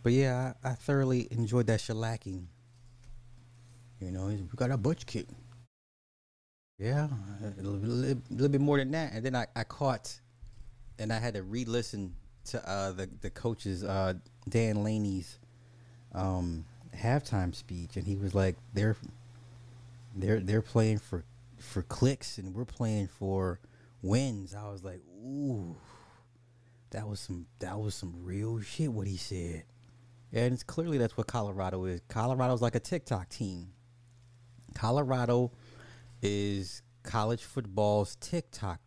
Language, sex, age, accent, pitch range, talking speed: English, male, 30-49, American, 100-120 Hz, 150 wpm